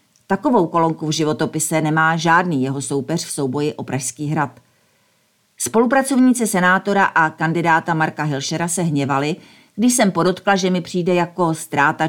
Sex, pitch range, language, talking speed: female, 150-180 Hz, Czech, 145 wpm